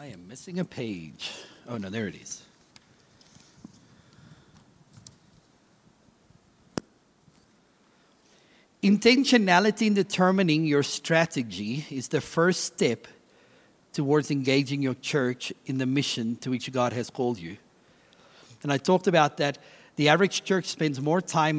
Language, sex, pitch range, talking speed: English, male, 130-185 Hz, 120 wpm